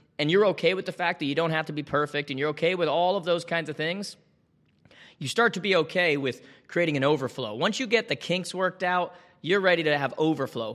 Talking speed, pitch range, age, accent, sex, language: 245 wpm, 155-195 Hz, 20-39, American, male, English